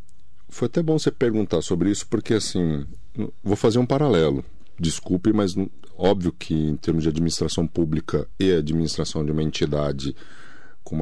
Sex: male